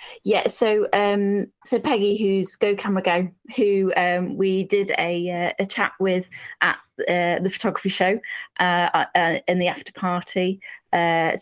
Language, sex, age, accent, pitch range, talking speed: English, female, 20-39, British, 165-195 Hz, 160 wpm